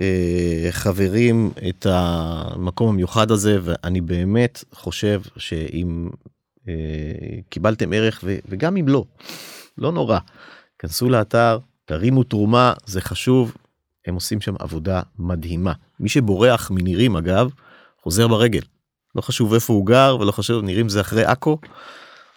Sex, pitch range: male, 90-125 Hz